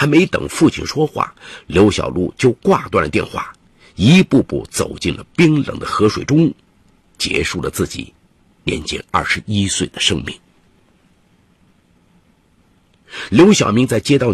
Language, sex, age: Chinese, male, 50-69